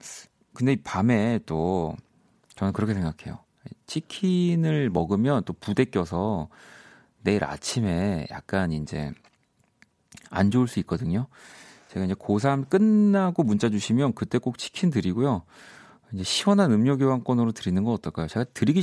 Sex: male